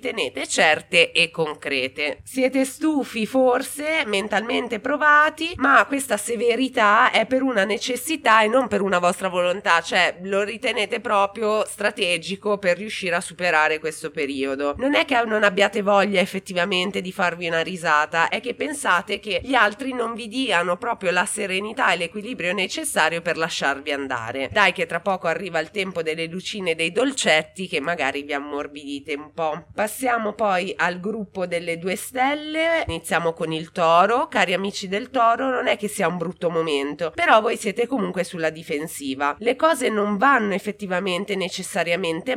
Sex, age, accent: female, 20-39, native